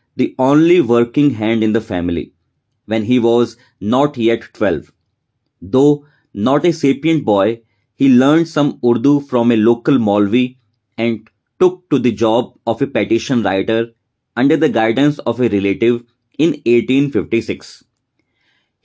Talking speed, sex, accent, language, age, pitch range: 135 wpm, male, native, Hindi, 20-39, 115-140 Hz